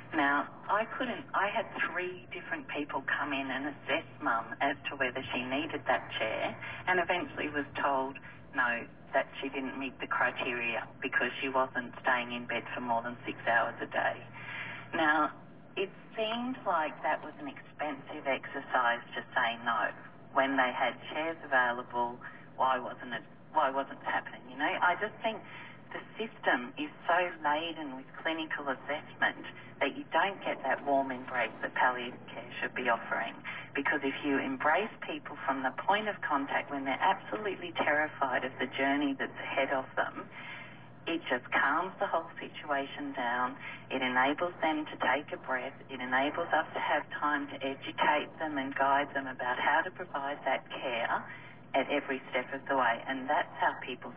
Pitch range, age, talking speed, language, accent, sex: 130-160 Hz, 40-59, 175 wpm, English, Australian, female